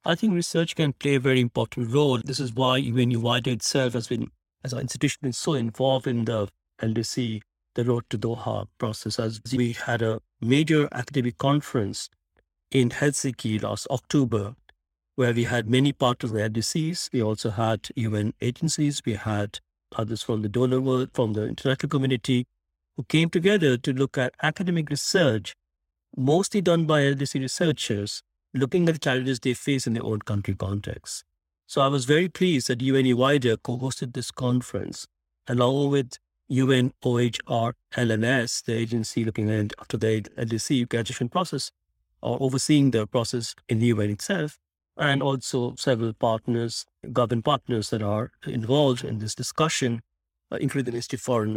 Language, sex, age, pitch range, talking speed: English, male, 60-79, 110-140 Hz, 160 wpm